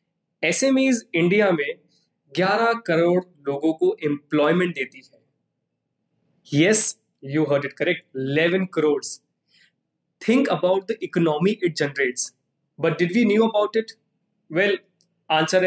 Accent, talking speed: native, 45 wpm